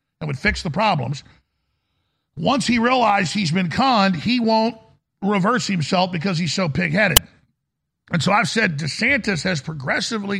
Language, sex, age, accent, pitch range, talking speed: English, male, 50-69, American, 155-210 Hz, 150 wpm